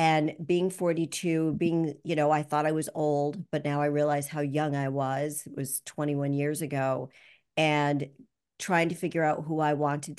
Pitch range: 145-165 Hz